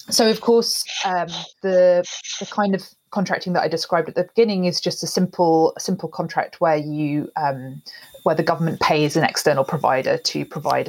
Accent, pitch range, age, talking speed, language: British, 160-190 Hz, 30-49, 180 wpm, English